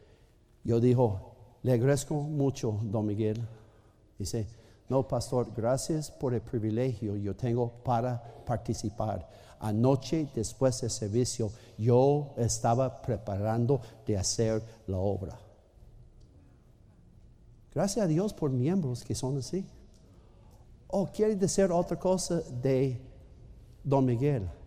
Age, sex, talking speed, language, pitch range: 50-69, male, 110 wpm, Spanish, 115-170 Hz